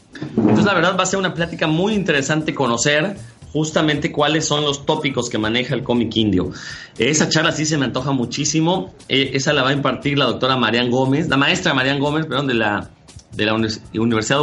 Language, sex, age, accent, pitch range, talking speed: Spanish, male, 30-49, Mexican, 115-150 Hz, 205 wpm